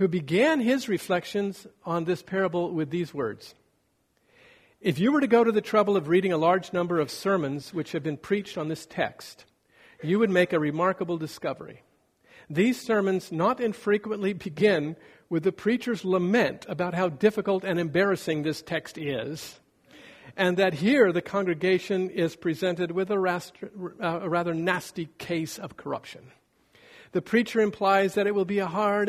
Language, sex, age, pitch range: English, male, 50-69, 160-195 Hz